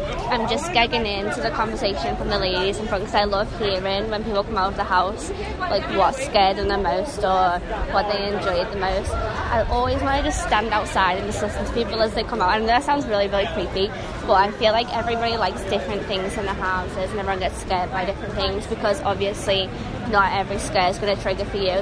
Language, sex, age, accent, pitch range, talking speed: English, female, 20-39, British, 200-225 Hz, 235 wpm